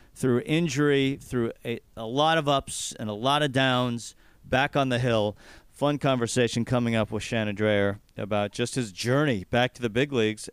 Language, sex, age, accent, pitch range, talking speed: English, male, 40-59, American, 115-145 Hz, 190 wpm